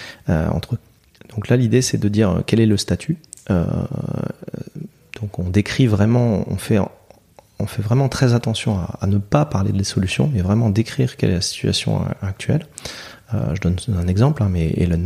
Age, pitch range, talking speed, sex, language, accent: 30-49, 100-130 Hz, 185 wpm, male, French, French